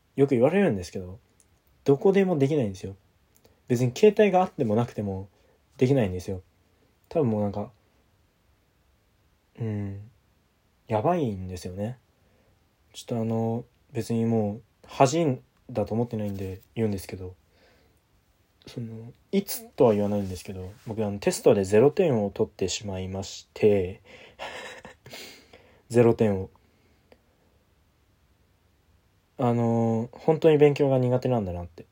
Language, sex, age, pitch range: Japanese, male, 20-39, 95-125 Hz